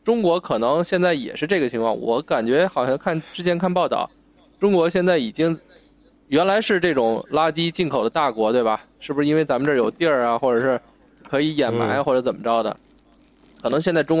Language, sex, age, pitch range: Chinese, male, 20-39, 120-175 Hz